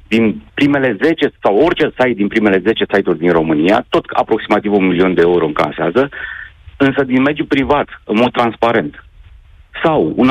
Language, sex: Romanian, male